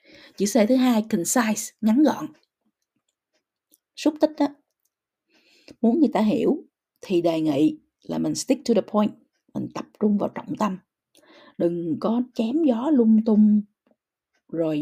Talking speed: 140 wpm